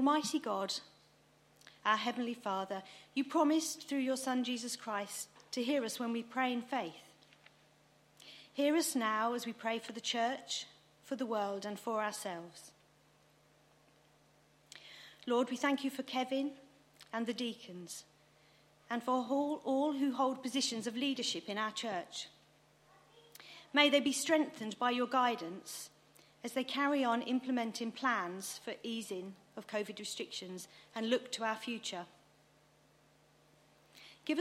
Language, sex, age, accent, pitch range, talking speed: English, female, 40-59, British, 200-265 Hz, 140 wpm